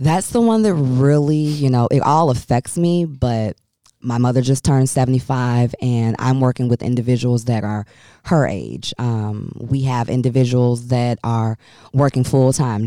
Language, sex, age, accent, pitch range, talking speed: English, female, 20-39, American, 120-135 Hz, 160 wpm